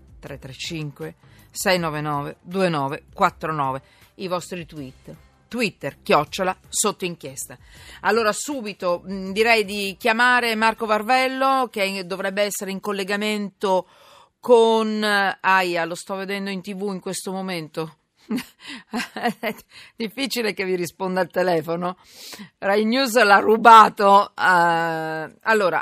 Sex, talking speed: female, 105 wpm